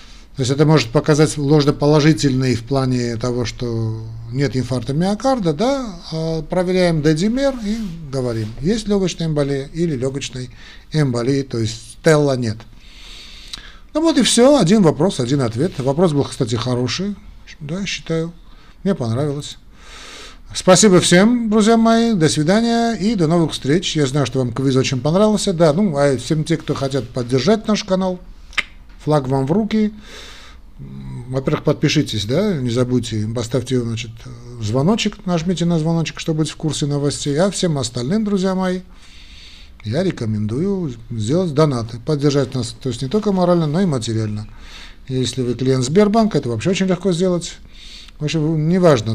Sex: male